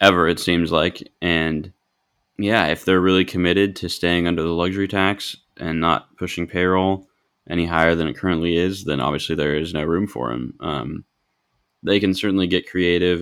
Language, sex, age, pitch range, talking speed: English, male, 20-39, 85-95 Hz, 180 wpm